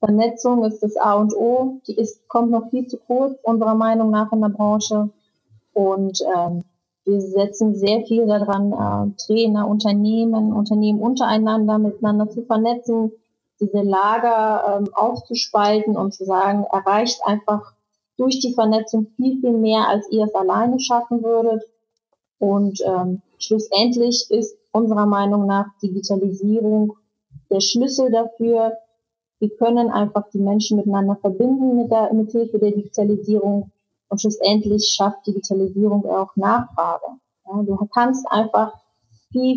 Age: 30-49